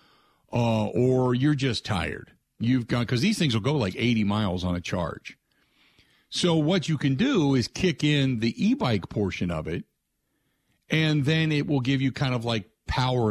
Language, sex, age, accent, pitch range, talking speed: English, male, 50-69, American, 105-145 Hz, 180 wpm